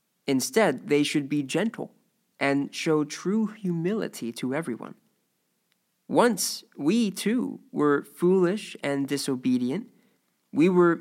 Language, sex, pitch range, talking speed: English, male, 160-210 Hz, 110 wpm